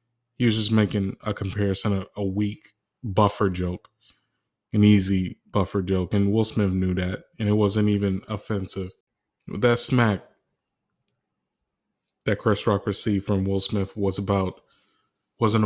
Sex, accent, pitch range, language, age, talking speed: male, American, 95-110 Hz, English, 20-39, 140 wpm